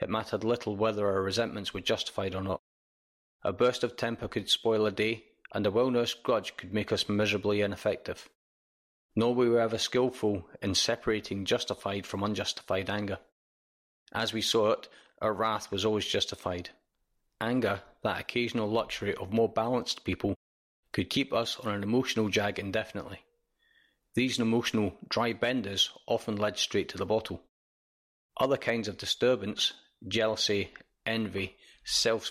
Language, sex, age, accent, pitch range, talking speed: English, male, 30-49, British, 95-115 Hz, 145 wpm